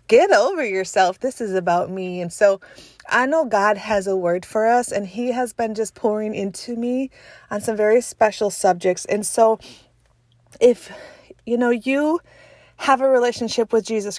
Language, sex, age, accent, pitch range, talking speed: English, female, 30-49, American, 195-250 Hz, 175 wpm